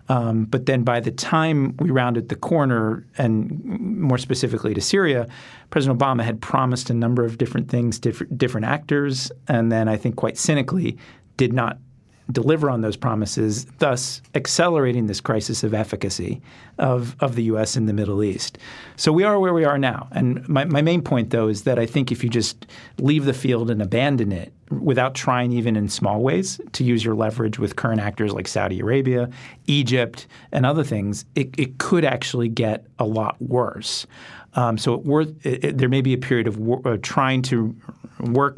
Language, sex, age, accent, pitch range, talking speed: English, male, 40-59, American, 110-135 Hz, 195 wpm